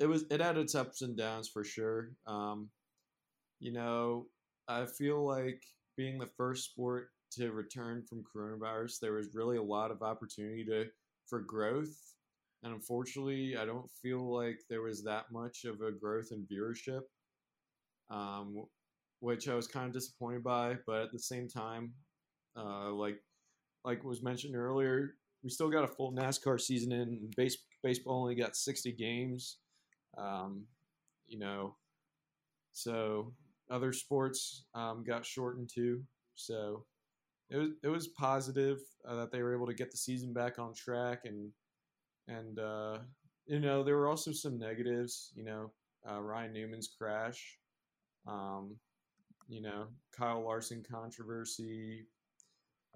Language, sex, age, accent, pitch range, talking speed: English, male, 20-39, American, 110-130 Hz, 150 wpm